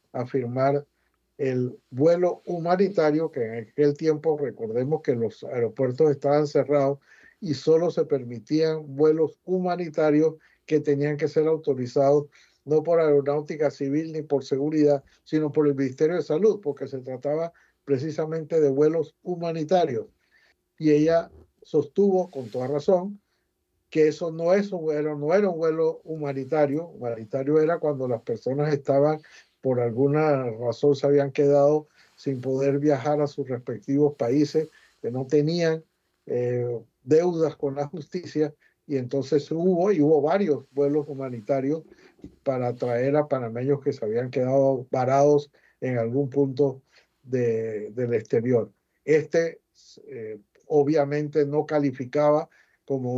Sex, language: male, Spanish